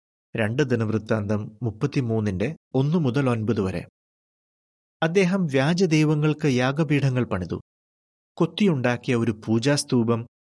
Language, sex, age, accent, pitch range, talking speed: Malayalam, male, 30-49, native, 110-155 Hz, 85 wpm